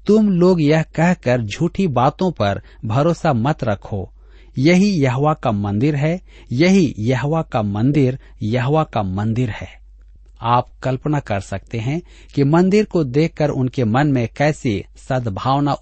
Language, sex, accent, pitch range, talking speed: Hindi, male, native, 110-155 Hz, 140 wpm